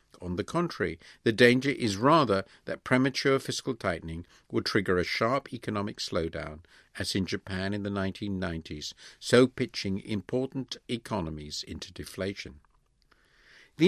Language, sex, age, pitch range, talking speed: English, male, 50-69, 90-125 Hz, 130 wpm